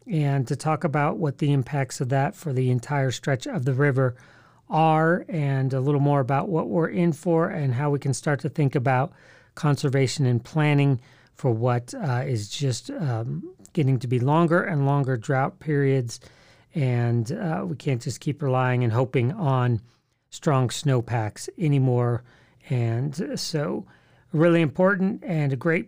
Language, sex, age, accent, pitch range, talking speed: English, male, 40-59, American, 130-160 Hz, 165 wpm